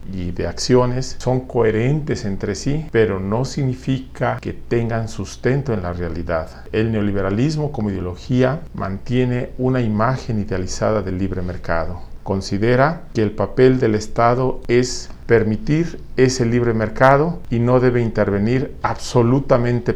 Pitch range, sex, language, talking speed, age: 100-125 Hz, male, Spanish, 130 wpm, 40-59